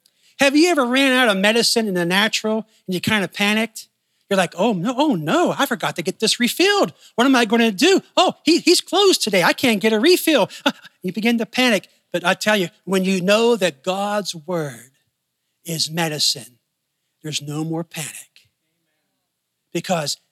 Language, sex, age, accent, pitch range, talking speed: English, male, 40-59, American, 170-260 Hz, 185 wpm